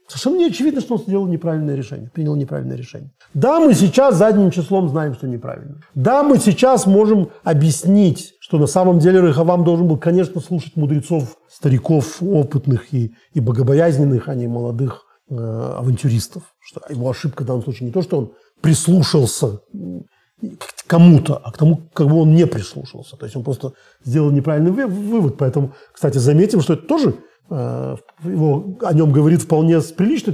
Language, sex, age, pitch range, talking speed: Russian, male, 40-59, 140-190 Hz, 165 wpm